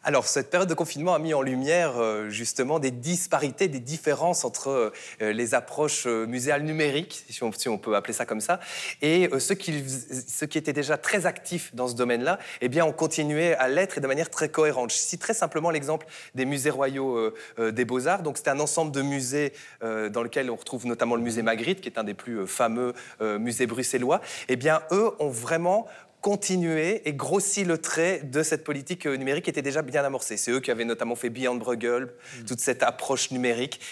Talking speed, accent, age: 220 wpm, French, 20-39